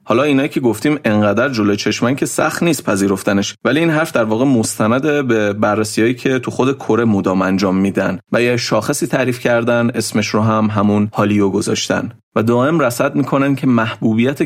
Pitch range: 100-120 Hz